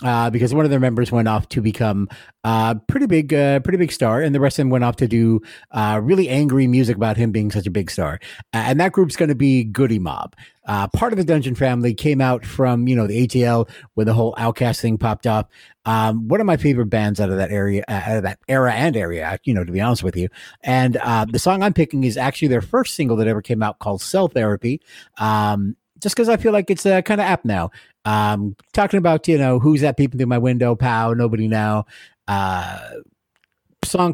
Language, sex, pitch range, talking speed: English, male, 110-140 Hz, 240 wpm